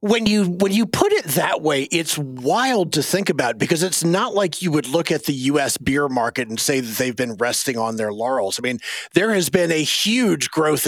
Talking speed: 230 wpm